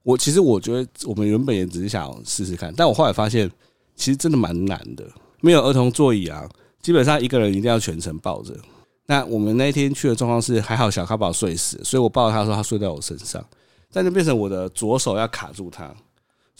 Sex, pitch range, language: male, 100-130 Hz, Chinese